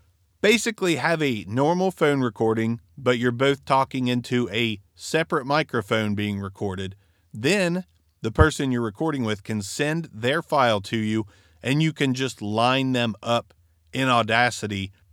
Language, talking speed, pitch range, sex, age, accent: English, 145 wpm, 105-135 Hz, male, 40-59, American